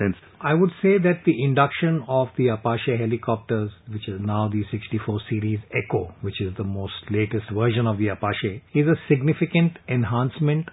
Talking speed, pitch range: 170 wpm, 110-140 Hz